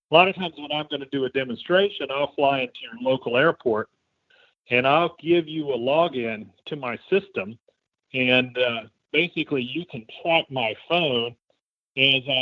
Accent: American